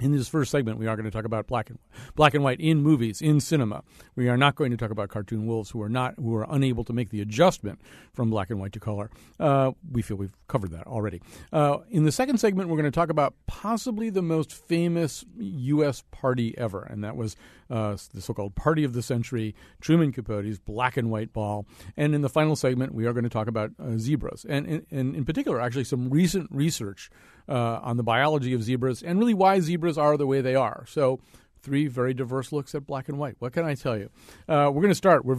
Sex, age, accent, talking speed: male, 50-69, American, 230 wpm